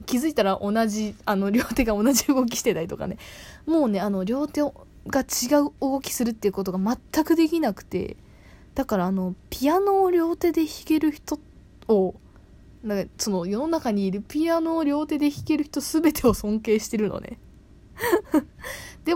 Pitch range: 200-310 Hz